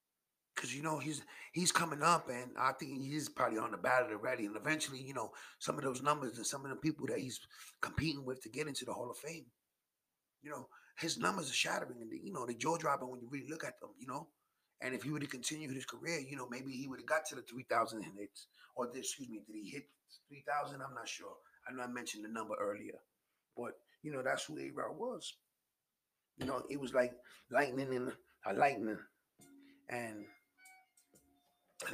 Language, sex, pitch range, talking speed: English, male, 125-155 Hz, 220 wpm